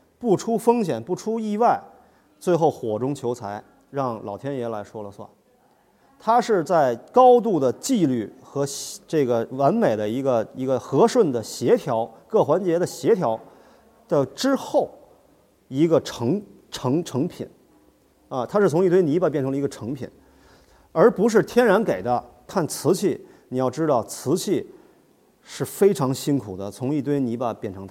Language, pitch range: Chinese, 120-170 Hz